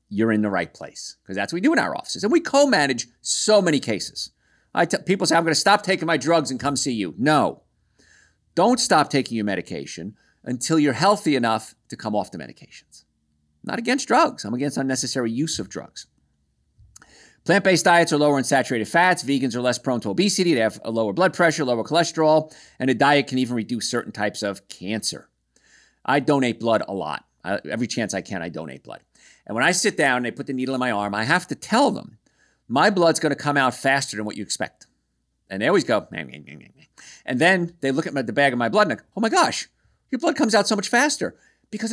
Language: English